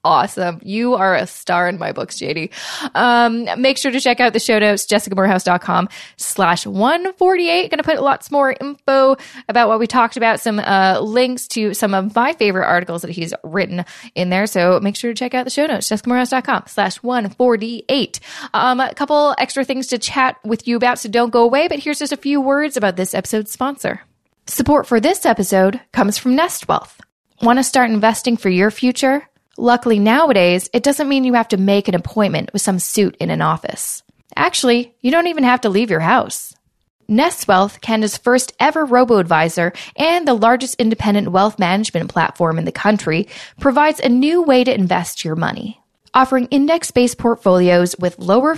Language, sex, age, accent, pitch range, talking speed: English, female, 20-39, American, 195-265 Hz, 185 wpm